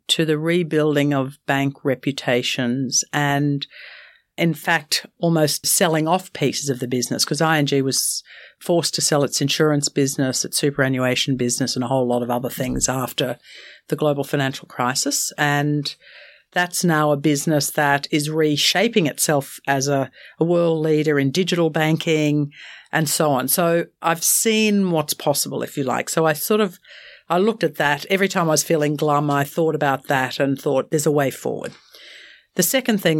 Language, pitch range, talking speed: English, 140-165 Hz, 170 wpm